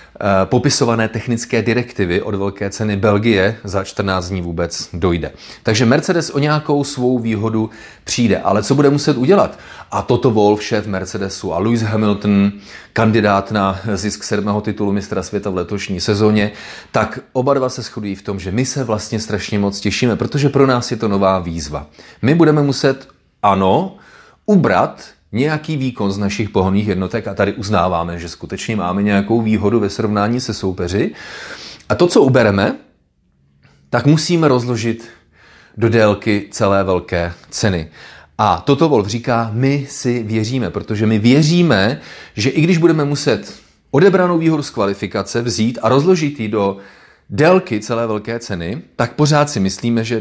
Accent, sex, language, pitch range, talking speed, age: native, male, Czech, 100-125 Hz, 155 wpm, 30-49